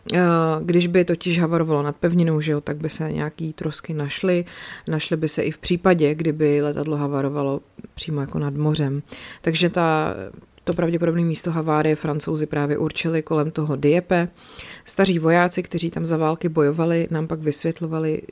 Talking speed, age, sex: 155 wpm, 30-49, female